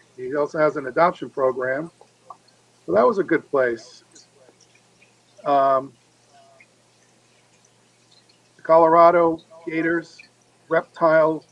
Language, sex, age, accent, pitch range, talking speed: English, male, 50-69, American, 135-165 Hz, 90 wpm